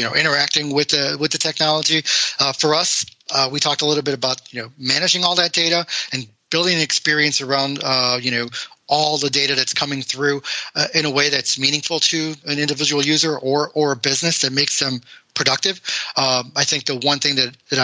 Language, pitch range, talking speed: English, 130-150 Hz, 215 wpm